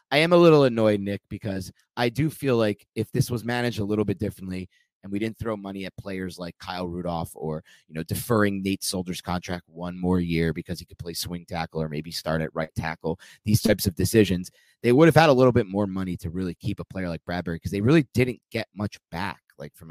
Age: 30-49